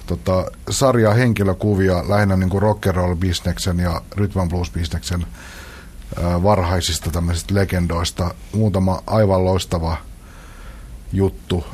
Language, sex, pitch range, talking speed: Finnish, male, 85-95 Hz, 80 wpm